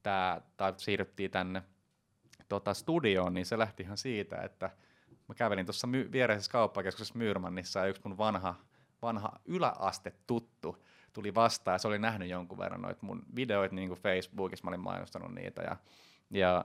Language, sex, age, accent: Finnish, male, 30-49, native